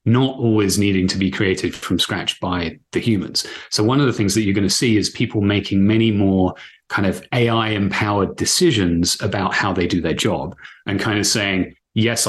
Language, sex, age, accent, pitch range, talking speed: English, male, 30-49, British, 95-115 Hz, 205 wpm